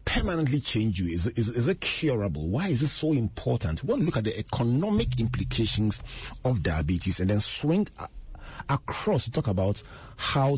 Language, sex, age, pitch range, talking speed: English, male, 40-59, 95-120 Hz, 165 wpm